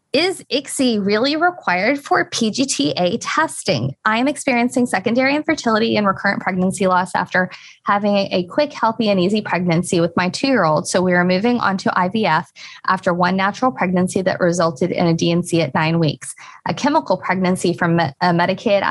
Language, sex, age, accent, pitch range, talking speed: English, female, 20-39, American, 165-195 Hz, 165 wpm